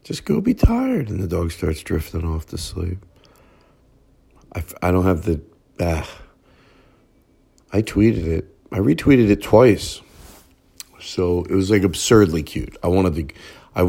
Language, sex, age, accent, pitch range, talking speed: English, male, 50-69, American, 85-105 Hz, 155 wpm